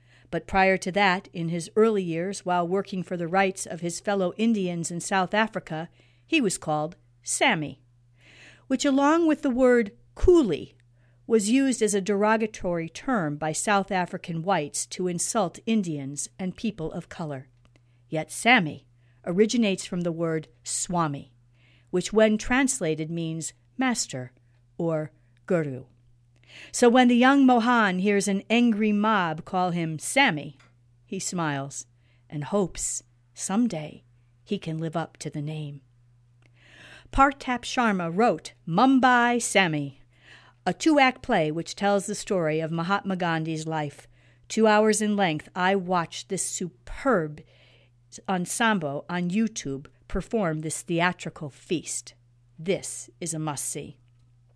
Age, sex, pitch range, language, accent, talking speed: 50-69, female, 130-205 Hz, English, American, 130 wpm